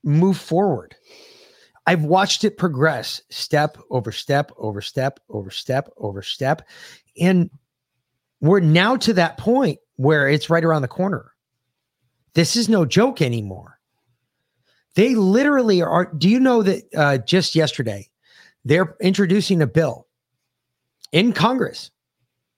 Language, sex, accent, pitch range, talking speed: English, male, American, 130-215 Hz, 130 wpm